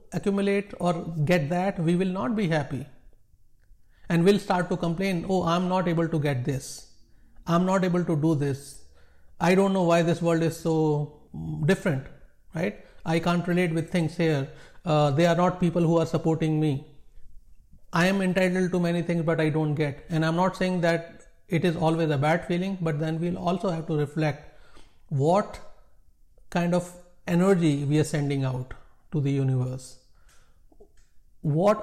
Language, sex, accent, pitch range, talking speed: English, male, Indian, 150-180 Hz, 170 wpm